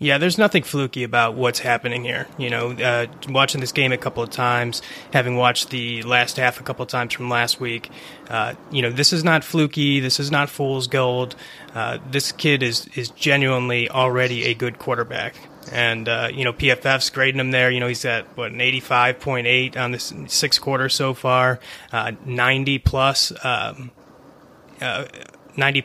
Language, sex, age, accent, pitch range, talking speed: English, male, 30-49, American, 120-140 Hz, 185 wpm